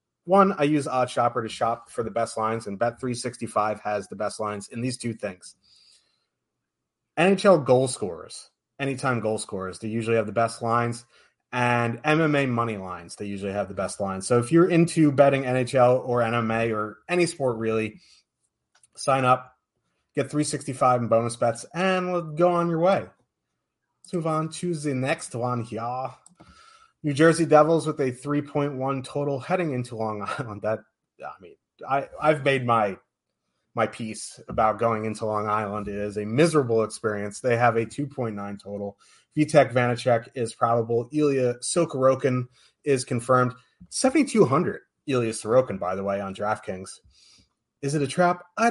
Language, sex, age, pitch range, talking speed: English, male, 30-49, 115-150 Hz, 165 wpm